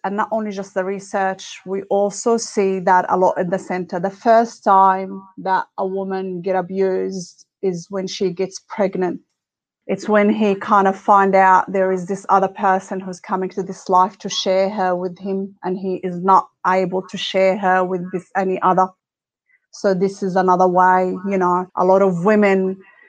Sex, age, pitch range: female, 30-49, 185-205 Hz